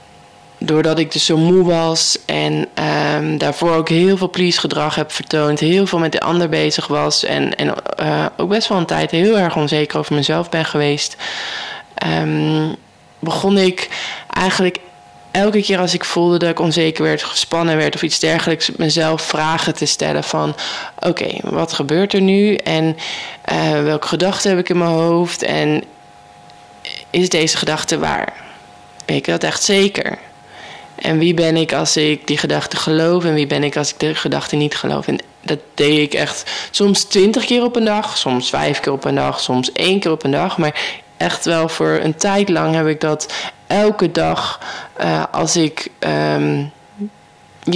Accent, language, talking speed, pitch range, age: Dutch, Dutch, 180 wpm, 145-175 Hz, 20-39